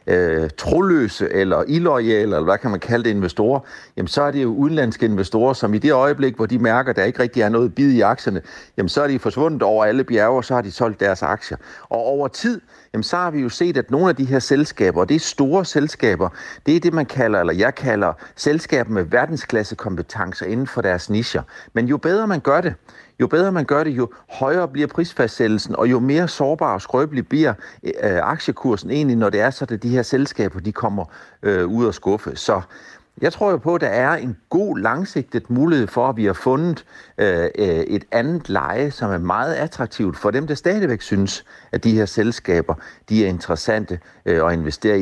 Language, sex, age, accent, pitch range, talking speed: Danish, male, 60-79, native, 110-145 Hz, 215 wpm